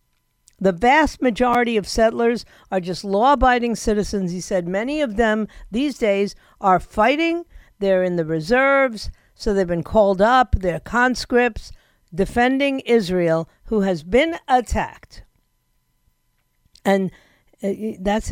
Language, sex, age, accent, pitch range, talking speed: English, female, 50-69, American, 190-250 Hz, 120 wpm